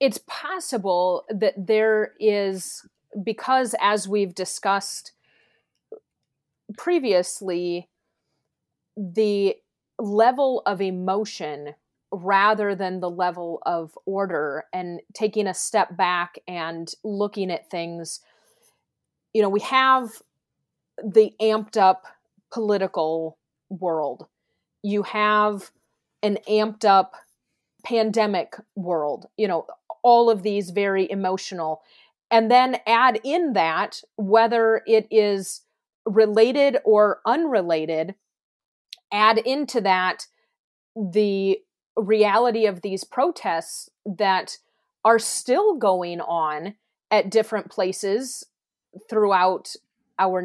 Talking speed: 95 wpm